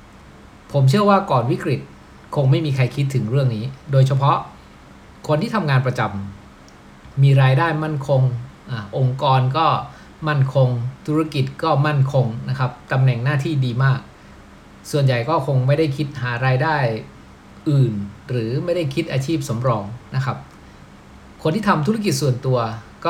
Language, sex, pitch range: Thai, male, 120-150 Hz